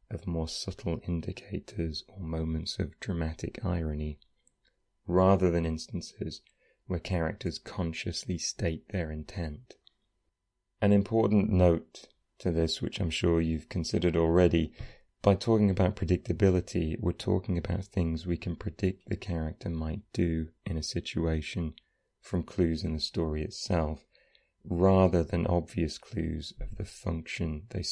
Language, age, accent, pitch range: English, 30-49, British, 80-95 Hz